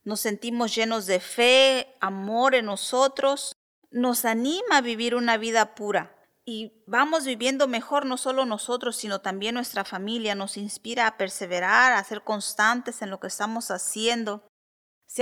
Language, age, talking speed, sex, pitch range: English, 40-59, 155 wpm, female, 200-245 Hz